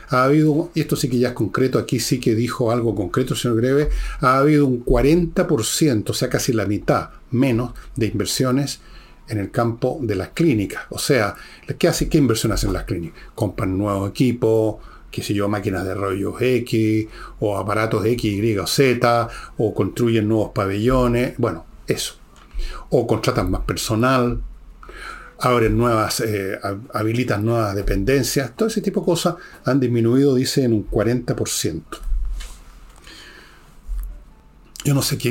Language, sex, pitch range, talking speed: Spanish, male, 105-140 Hz, 155 wpm